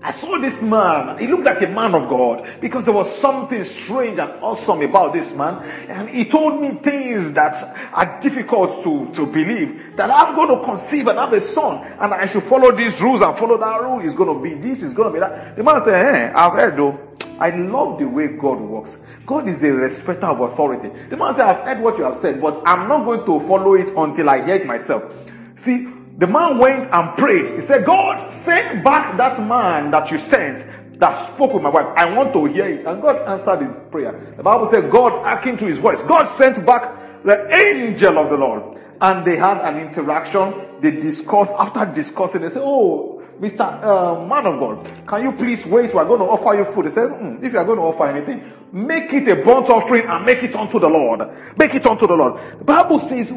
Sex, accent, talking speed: male, Nigerian, 230 wpm